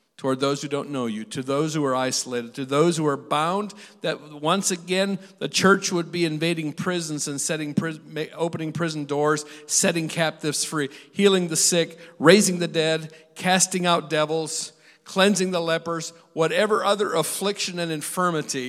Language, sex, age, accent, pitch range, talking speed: English, male, 50-69, American, 150-185 Hz, 165 wpm